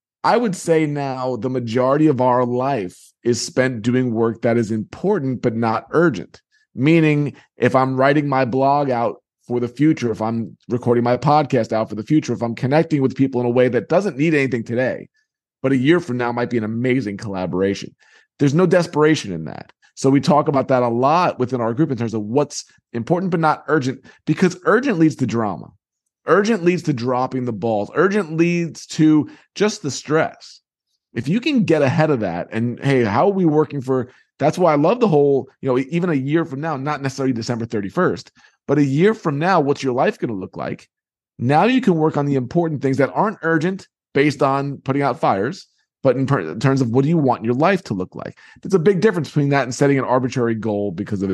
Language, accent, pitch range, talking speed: English, American, 120-155 Hz, 220 wpm